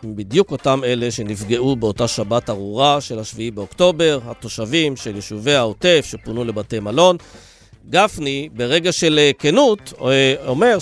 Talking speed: 130 wpm